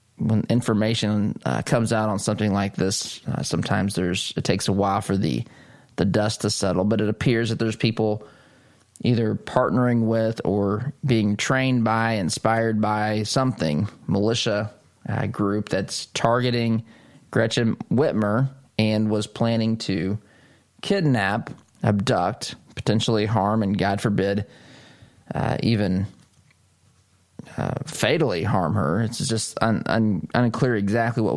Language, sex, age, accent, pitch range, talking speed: English, male, 20-39, American, 105-120 Hz, 130 wpm